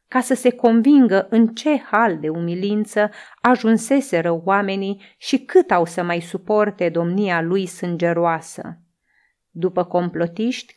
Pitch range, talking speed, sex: 175-235 Hz, 125 wpm, female